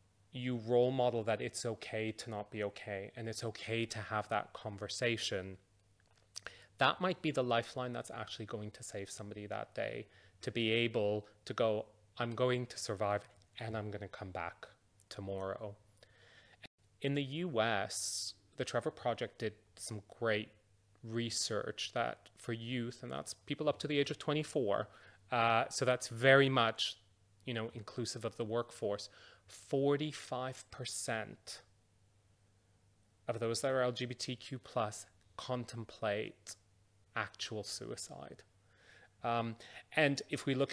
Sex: male